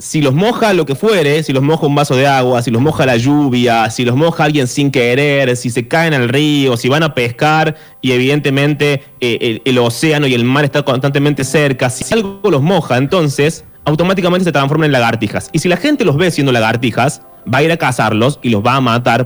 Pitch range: 120-150 Hz